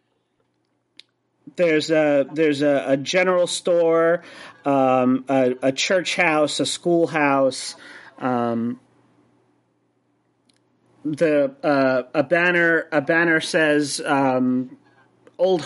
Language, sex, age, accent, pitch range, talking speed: English, male, 30-49, American, 145-175 Hz, 95 wpm